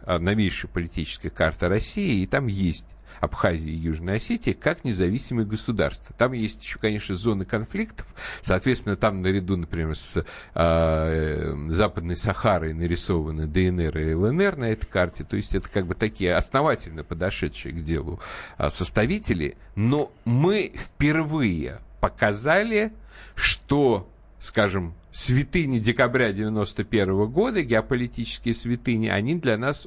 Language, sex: Russian, male